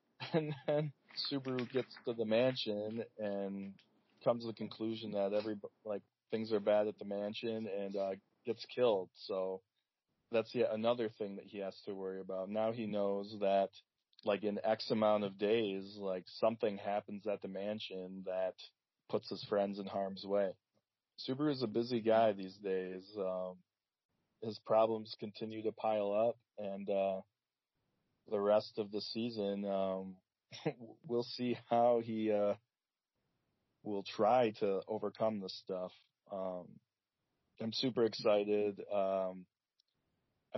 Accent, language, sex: American, English, male